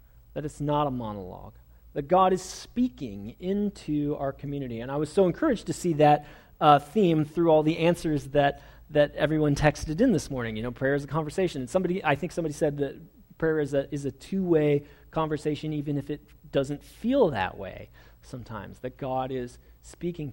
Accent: American